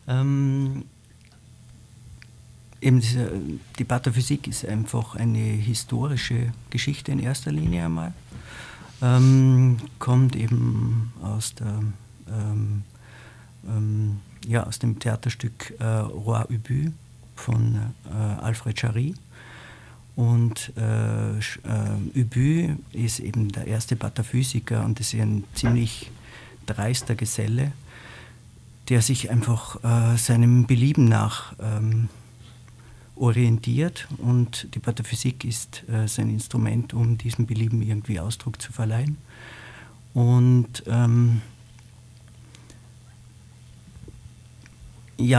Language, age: German, 50-69